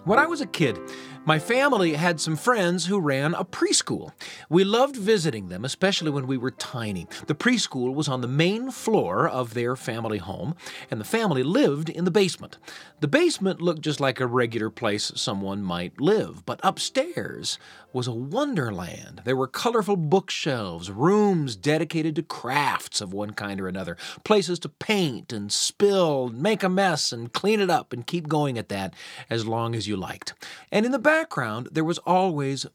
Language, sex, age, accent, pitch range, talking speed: English, male, 40-59, American, 125-185 Hz, 180 wpm